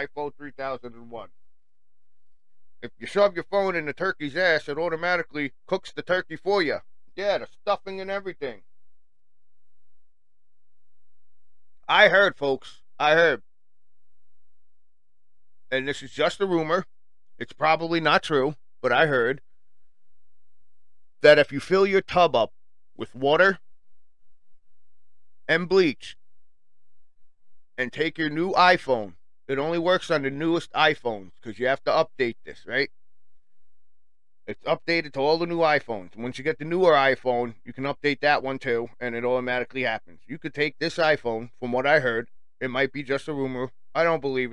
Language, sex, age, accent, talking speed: English, male, 40-59, American, 155 wpm